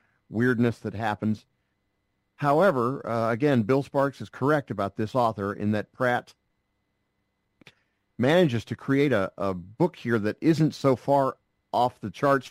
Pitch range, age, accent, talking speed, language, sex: 100-120 Hz, 50-69, American, 145 wpm, English, male